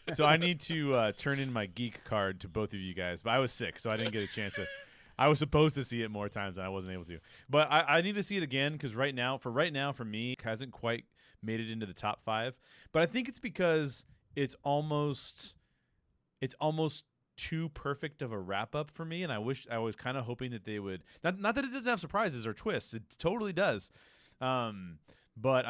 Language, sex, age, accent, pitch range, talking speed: English, male, 30-49, American, 100-140 Hz, 245 wpm